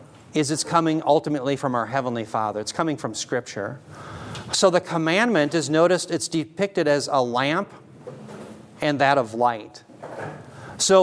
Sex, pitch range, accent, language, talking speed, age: male, 120-155 Hz, American, English, 145 wpm, 40-59